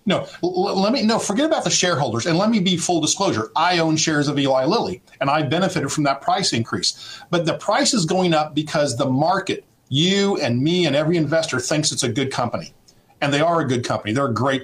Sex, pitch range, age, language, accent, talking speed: male, 140-195 Hz, 50-69, English, American, 230 wpm